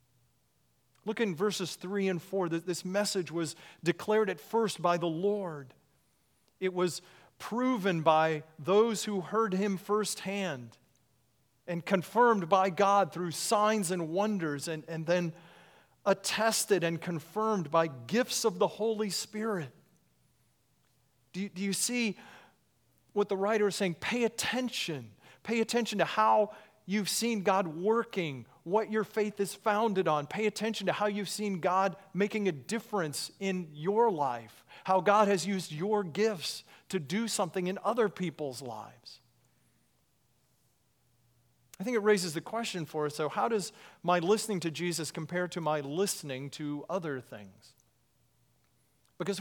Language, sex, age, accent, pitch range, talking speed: English, male, 40-59, American, 160-210 Hz, 145 wpm